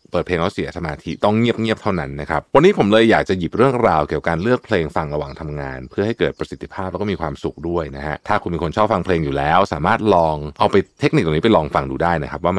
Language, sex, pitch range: Thai, male, 80-115 Hz